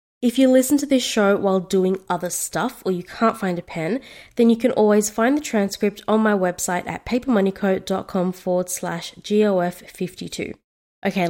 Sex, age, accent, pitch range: female, 20-39, Australian, 190-230 Hz